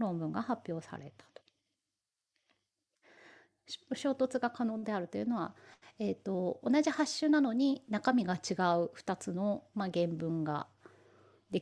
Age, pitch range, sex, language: 30-49, 170-240 Hz, female, Japanese